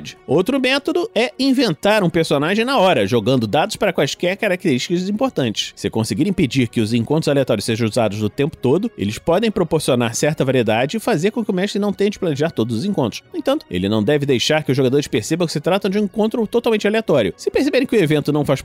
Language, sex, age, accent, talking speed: Portuguese, male, 30-49, Brazilian, 220 wpm